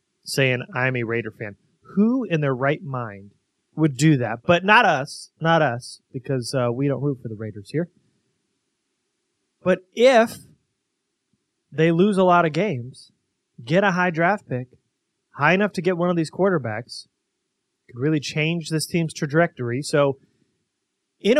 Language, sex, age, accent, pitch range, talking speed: English, male, 30-49, American, 130-180 Hz, 155 wpm